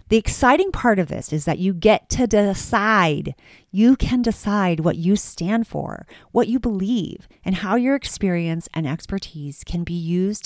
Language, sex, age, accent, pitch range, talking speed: English, female, 40-59, American, 155-205 Hz, 170 wpm